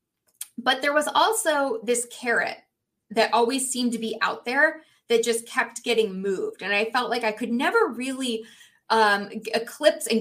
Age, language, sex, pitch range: 20-39, English, female, 215-265 Hz